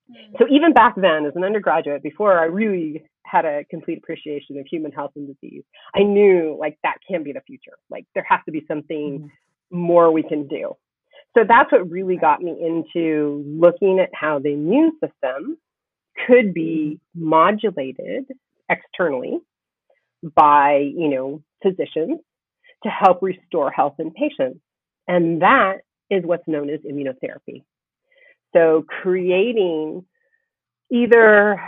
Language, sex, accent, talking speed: English, female, American, 140 wpm